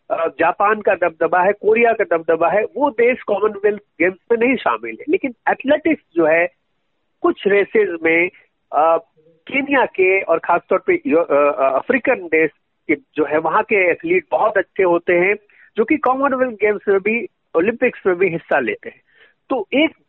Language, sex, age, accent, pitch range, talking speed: Hindi, male, 50-69, native, 180-260 Hz, 165 wpm